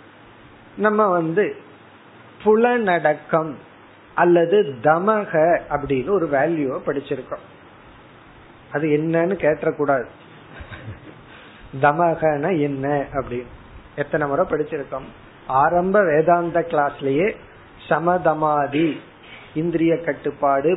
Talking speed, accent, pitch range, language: 70 wpm, native, 145-195 Hz, Tamil